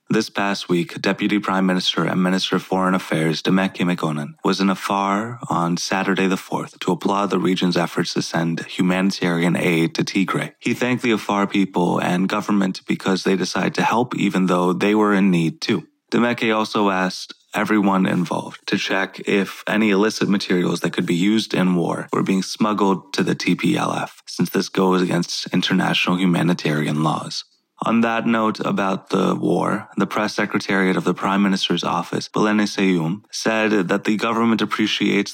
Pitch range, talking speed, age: 90-105 Hz, 170 wpm, 30-49